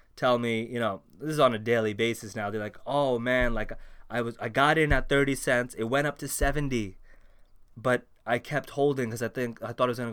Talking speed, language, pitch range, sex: 245 wpm, English, 105-125 Hz, male